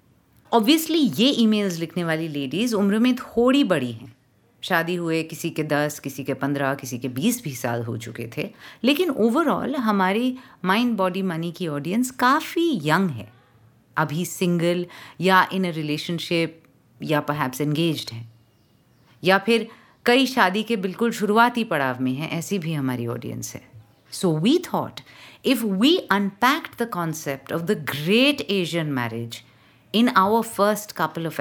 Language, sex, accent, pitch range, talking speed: Hindi, female, native, 150-220 Hz, 150 wpm